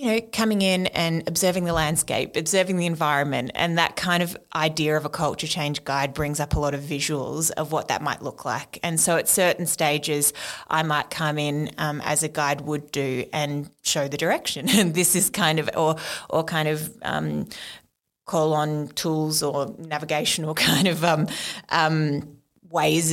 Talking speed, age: 190 wpm, 20-39